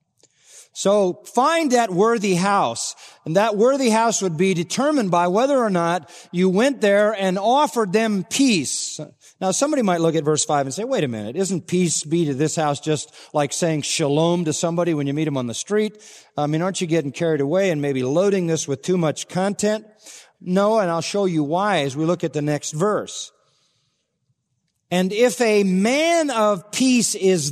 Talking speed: 195 wpm